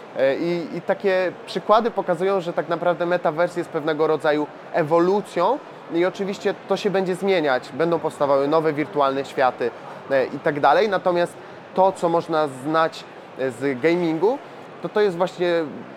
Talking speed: 145 wpm